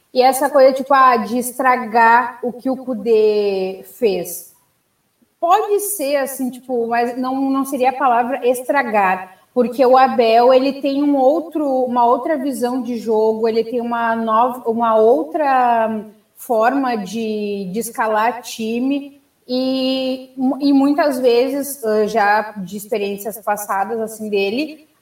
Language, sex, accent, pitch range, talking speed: Portuguese, female, Brazilian, 220-265 Hz, 135 wpm